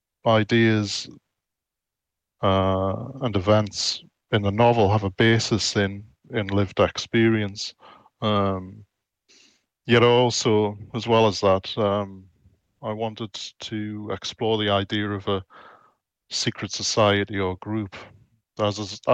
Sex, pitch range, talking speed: male, 95-110 Hz, 115 wpm